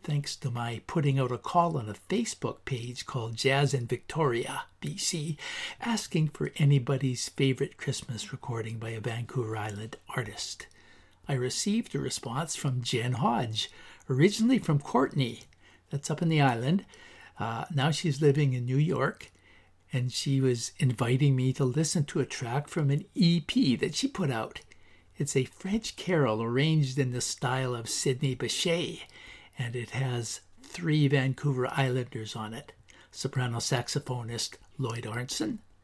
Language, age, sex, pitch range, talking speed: English, 60-79, male, 115-145 Hz, 150 wpm